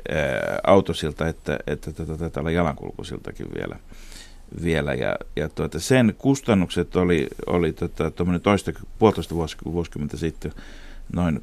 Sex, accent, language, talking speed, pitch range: male, native, Finnish, 130 wpm, 75-90 Hz